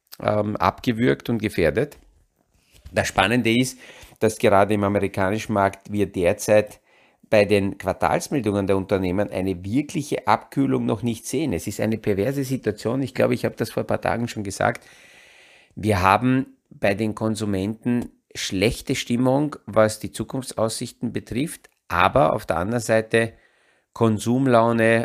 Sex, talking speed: male, 135 wpm